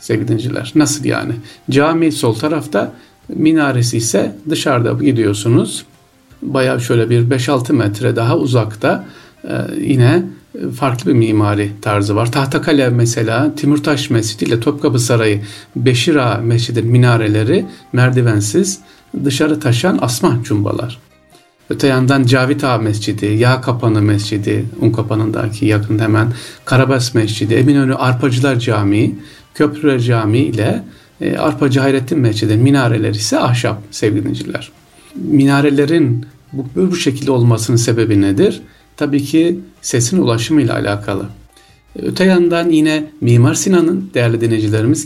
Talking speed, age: 115 wpm, 50-69